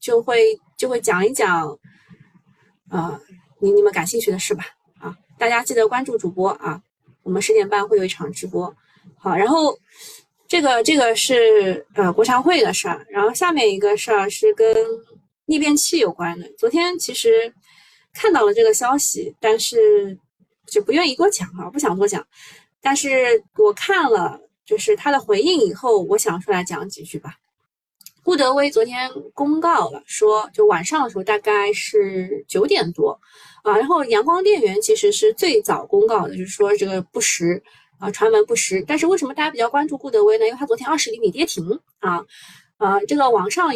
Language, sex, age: Chinese, female, 20-39